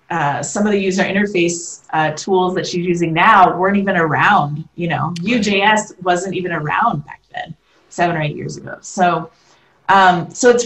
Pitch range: 165-210 Hz